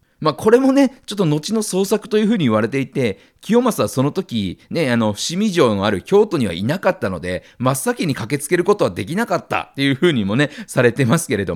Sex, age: male, 40-59